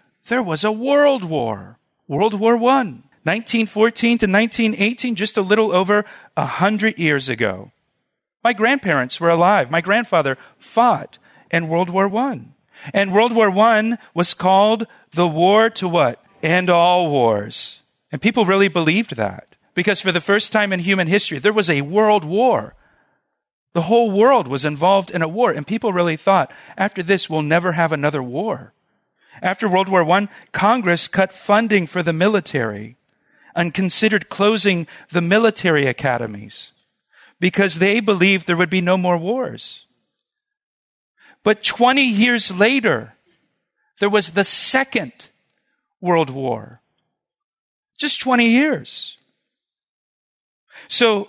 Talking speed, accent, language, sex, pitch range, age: 140 wpm, American, English, male, 175-220 Hz, 40-59